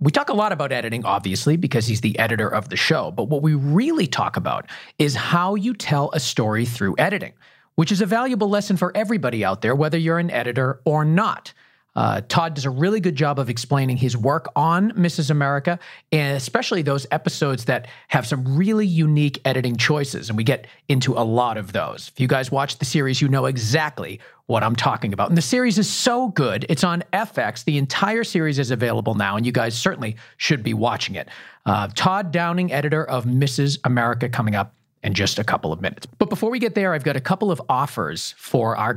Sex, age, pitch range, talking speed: male, 40-59, 125-180 Hz, 215 wpm